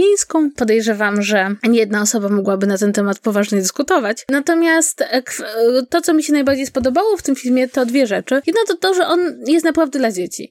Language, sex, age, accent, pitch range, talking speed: Polish, female, 20-39, native, 230-285 Hz, 190 wpm